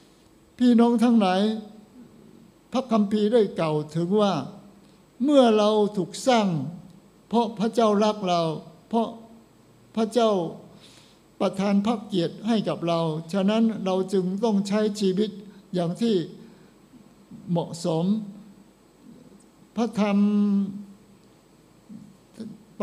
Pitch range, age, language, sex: 185-225 Hz, 60-79, Thai, male